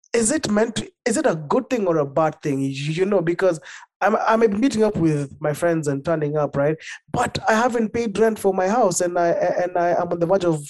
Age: 20-39